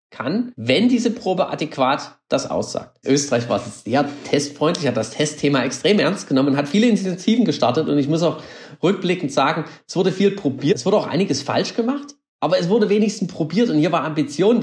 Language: German